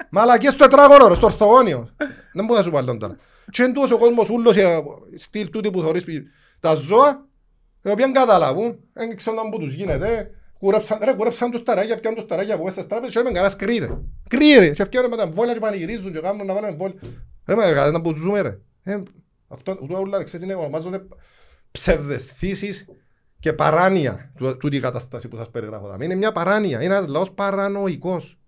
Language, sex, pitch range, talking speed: Greek, male, 160-220 Hz, 105 wpm